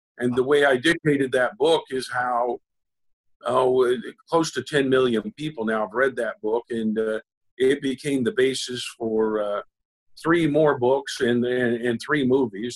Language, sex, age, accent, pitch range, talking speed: English, male, 50-69, American, 115-135 Hz, 170 wpm